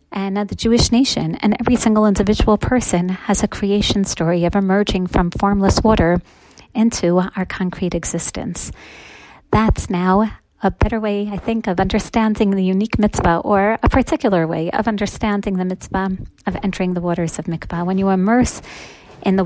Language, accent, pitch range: English, American, 185-220 Hz